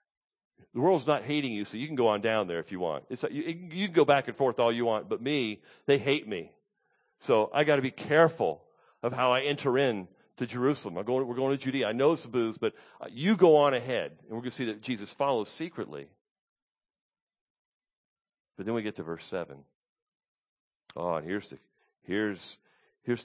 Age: 50-69